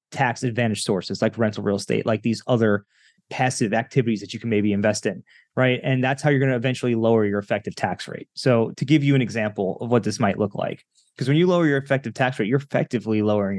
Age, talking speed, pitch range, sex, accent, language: 20-39, 240 wpm, 110-135 Hz, male, American, English